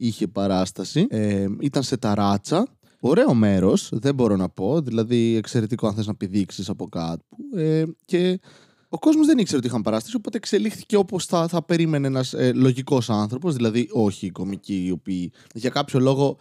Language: Greek